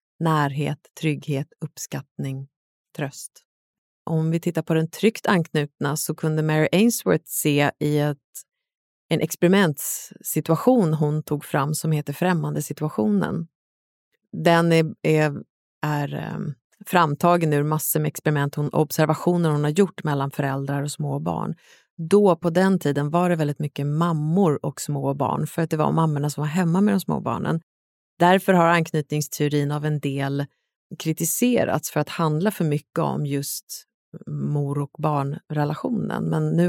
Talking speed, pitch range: 145 wpm, 145-170 Hz